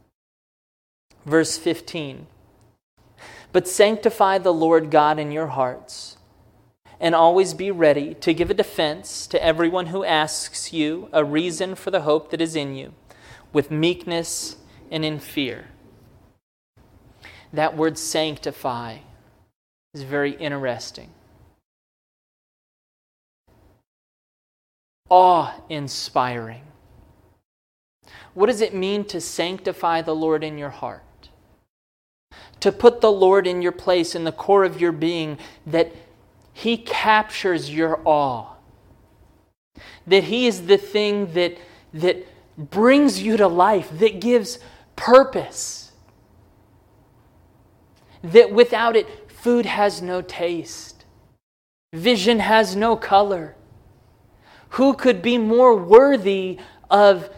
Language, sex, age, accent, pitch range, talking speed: English, male, 30-49, American, 125-200 Hz, 110 wpm